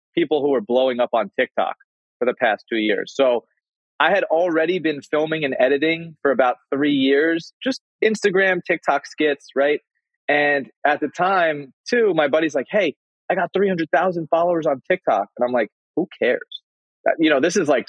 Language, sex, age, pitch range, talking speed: English, male, 30-49, 120-165 Hz, 180 wpm